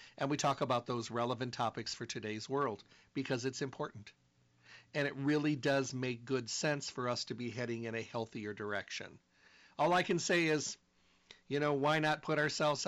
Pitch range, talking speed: 125-155 Hz, 185 wpm